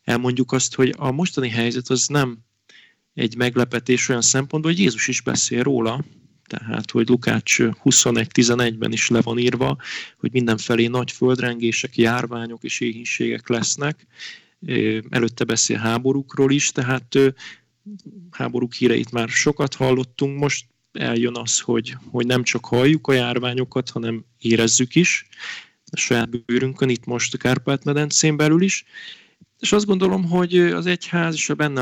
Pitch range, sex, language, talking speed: 120-150 Hz, male, Hungarian, 140 wpm